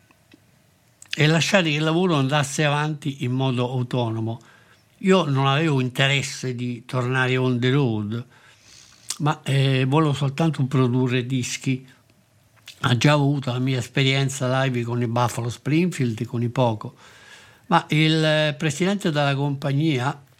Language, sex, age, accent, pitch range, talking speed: Italian, male, 60-79, native, 120-155 Hz, 130 wpm